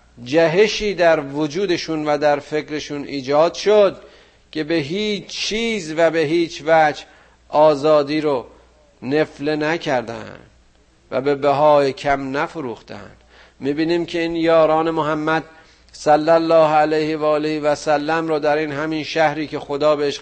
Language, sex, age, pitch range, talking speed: Persian, male, 50-69, 145-170 Hz, 135 wpm